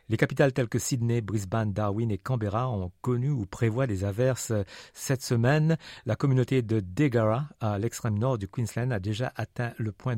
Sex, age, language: male, 50-69, French